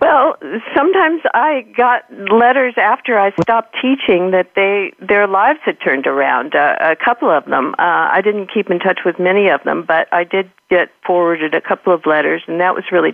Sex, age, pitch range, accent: female, 50-69, 175-220 Hz, American